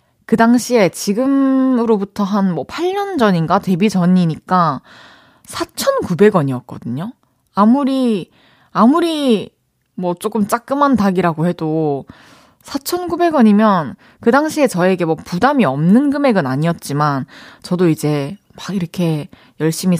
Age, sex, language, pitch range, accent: 20-39, female, Korean, 170-265 Hz, native